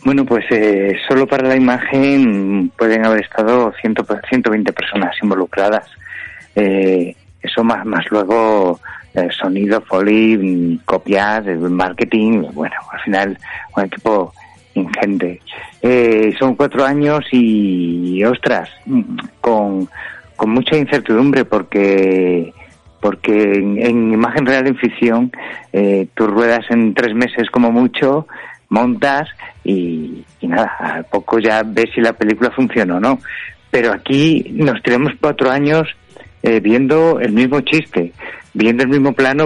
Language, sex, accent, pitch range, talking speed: Spanish, male, Spanish, 105-135 Hz, 130 wpm